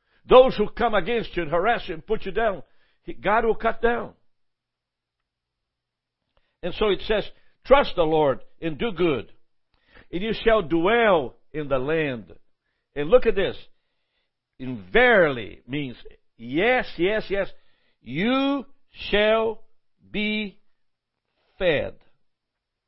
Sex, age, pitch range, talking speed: male, 60-79, 135-205 Hz, 120 wpm